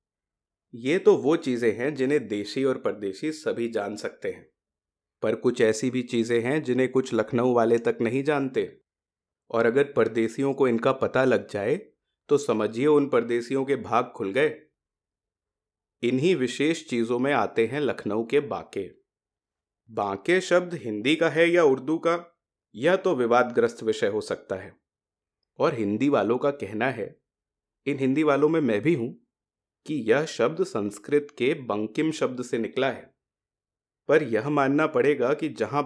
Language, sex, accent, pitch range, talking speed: Hindi, male, native, 115-155 Hz, 160 wpm